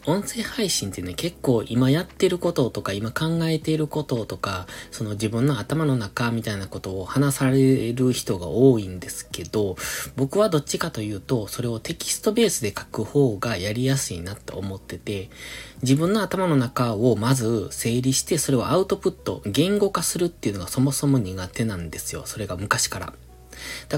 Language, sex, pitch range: Japanese, male, 105-155 Hz